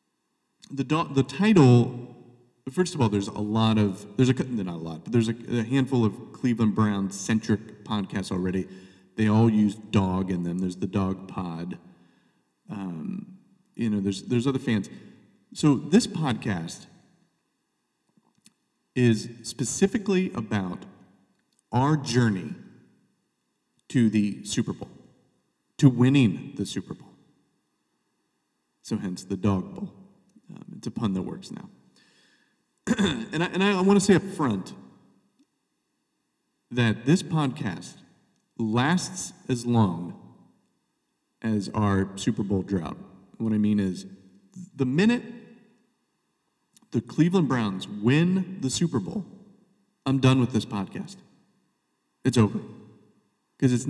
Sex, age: male, 40-59